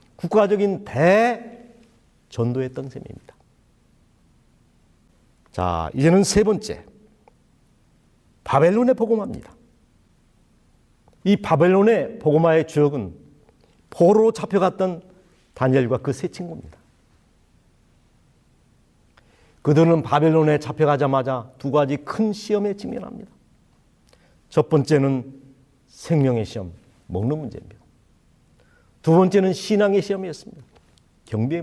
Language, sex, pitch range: Korean, male, 130-175 Hz